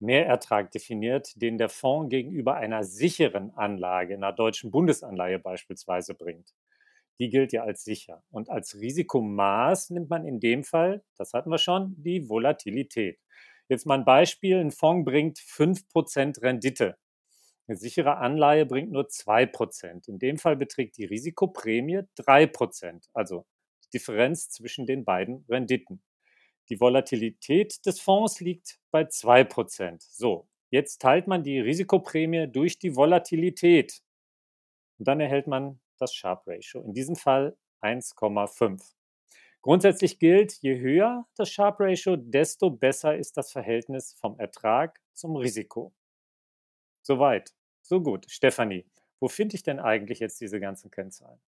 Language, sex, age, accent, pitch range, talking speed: German, male, 40-59, German, 115-170 Hz, 135 wpm